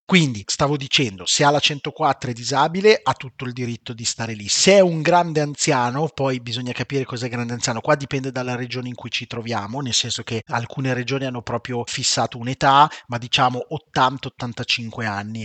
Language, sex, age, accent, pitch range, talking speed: Italian, male, 30-49, native, 115-140 Hz, 185 wpm